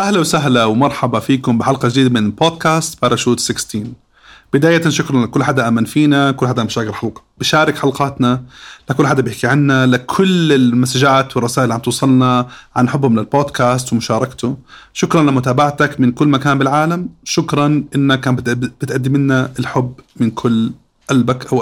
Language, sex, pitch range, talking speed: Arabic, male, 120-145 Hz, 145 wpm